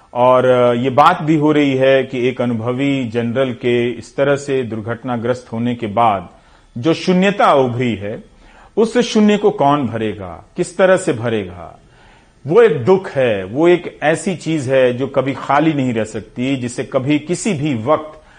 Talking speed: 170 wpm